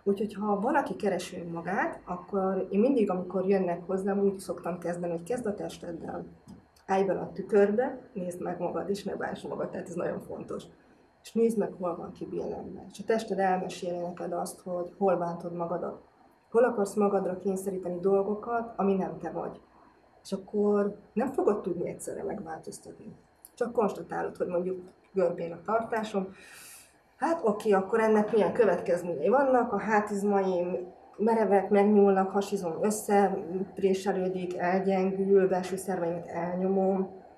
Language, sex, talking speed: Hungarian, female, 145 wpm